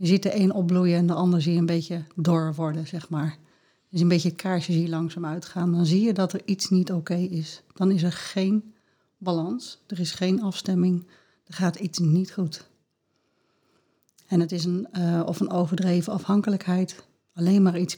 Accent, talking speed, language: Dutch, 205 wpm, Dutch